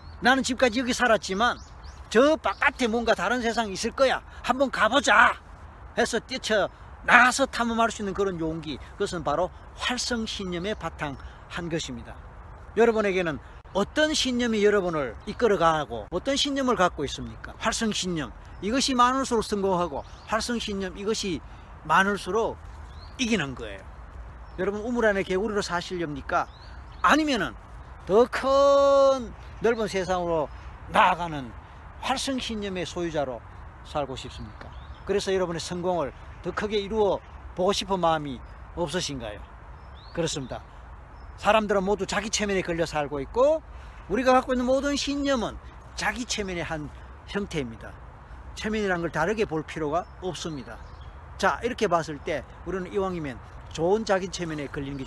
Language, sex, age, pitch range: Korean, male, 40-59, 150-230 Hz